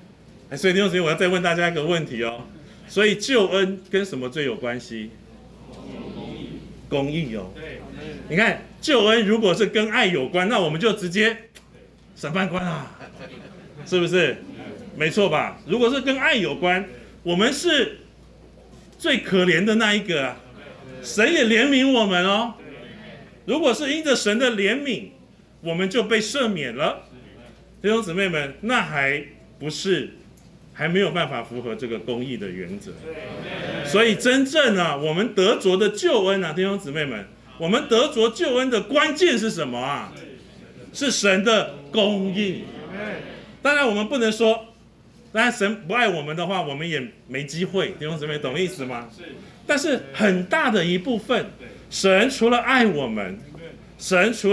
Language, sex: Chinese, male